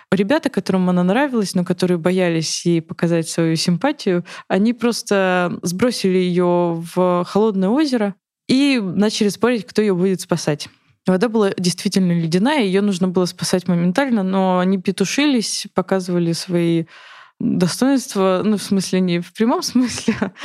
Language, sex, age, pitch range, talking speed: Russian, female, 20-39, 175-205 Hz, 140 wpm